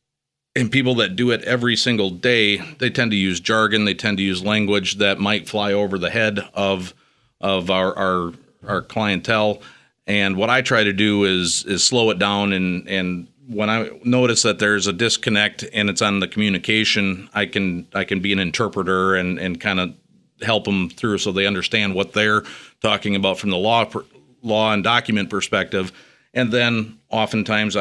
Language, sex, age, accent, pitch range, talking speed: English, male, 40-59, American, 95-110 Hz, 185 wpm